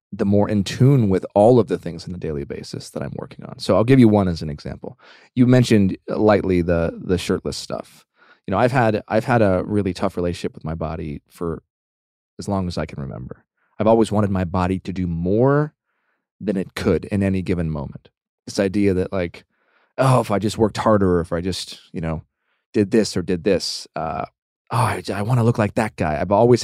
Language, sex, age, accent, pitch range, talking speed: English, male, 20-39, American, 90-110 Hz, 225 wpm